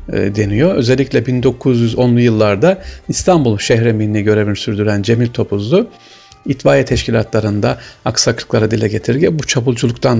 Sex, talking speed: male, 100 wpm